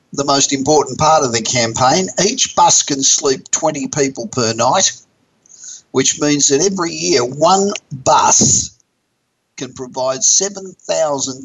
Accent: Australian